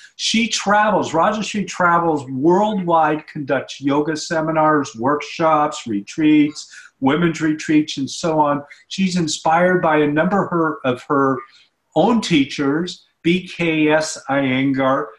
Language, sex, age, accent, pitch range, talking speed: English, male, 50-69, American, 145-170 Hz, 110 wpm